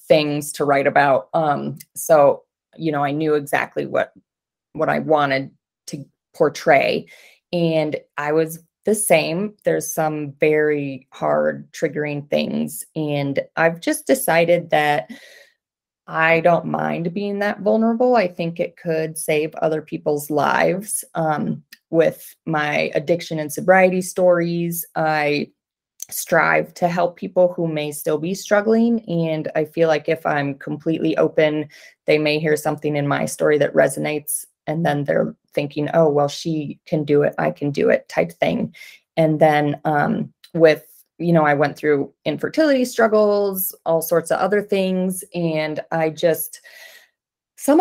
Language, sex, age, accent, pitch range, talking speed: English, female, 20-39, American, 150-180 Hz, 145 wpm